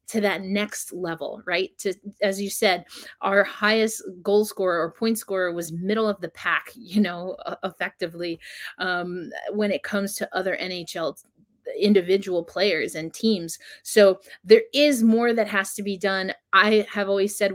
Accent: American